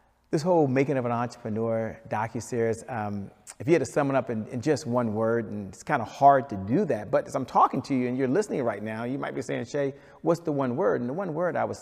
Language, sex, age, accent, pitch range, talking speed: English, male, 40-59, American, 115-145 Hz, 275 wpm